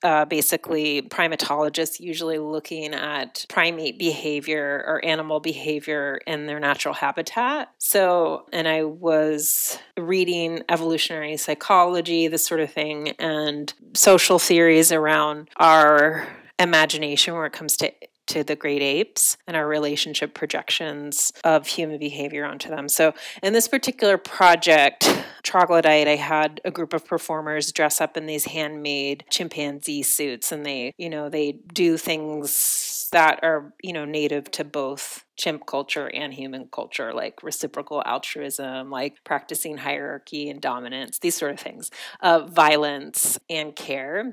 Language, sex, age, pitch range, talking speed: English, female, 30-49, 150-170 Hz, 140 wpm